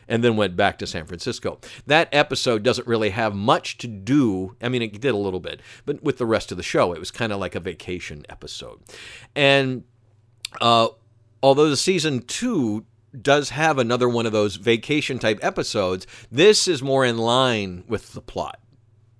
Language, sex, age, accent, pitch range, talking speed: English, male, 50-69, American, 105-135 Hz, 185 wpm